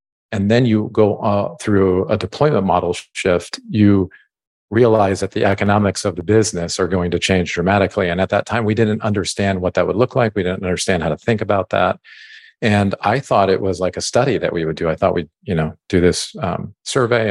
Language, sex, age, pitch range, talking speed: English, male, 50-69, 90-105 Hz, 220 wpm